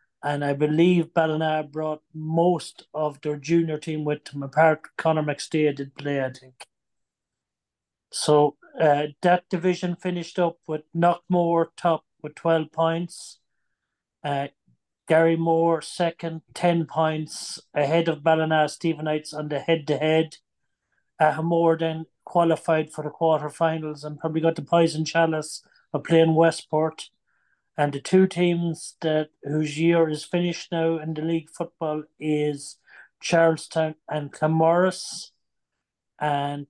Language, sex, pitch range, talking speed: English, male, 150-165 Hz, 130 wpm